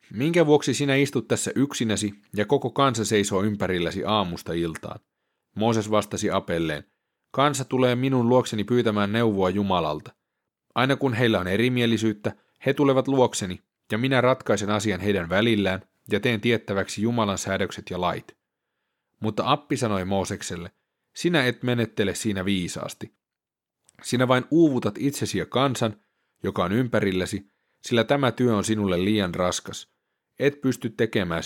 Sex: male